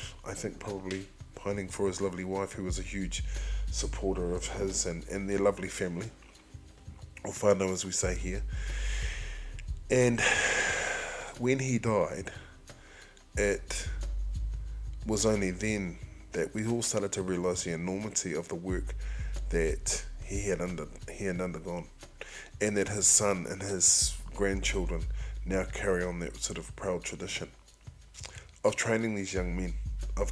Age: 20-39